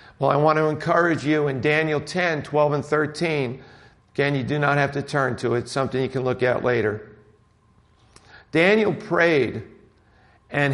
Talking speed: 175 wpm